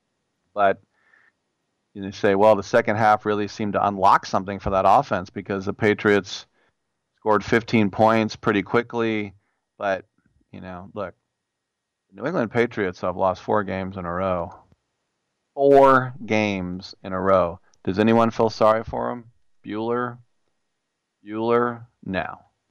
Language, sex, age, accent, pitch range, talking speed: English, male, 40-59, American, 95-115 Hz, 140 wpm